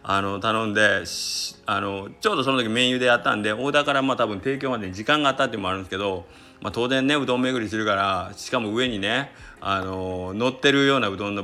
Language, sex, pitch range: Japanese, male, 95-125 Hz